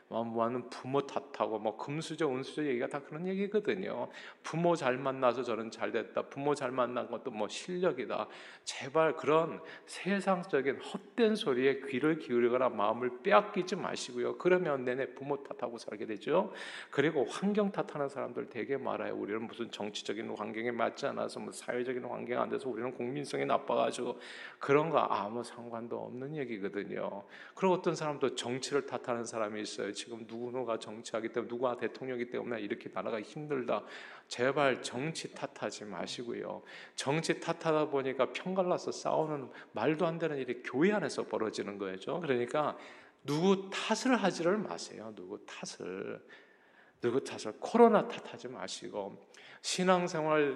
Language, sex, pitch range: Korean, male, 120-175 Hz